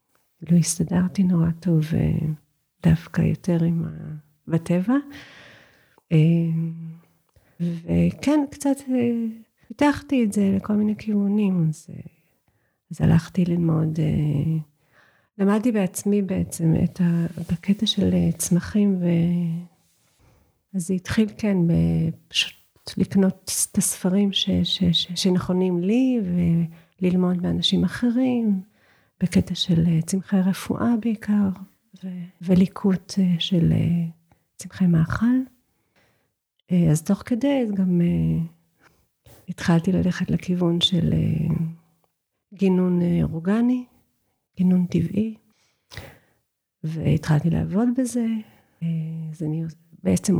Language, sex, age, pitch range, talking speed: Hebrew, female, 40-59, 165-195 Hz, 80 wpm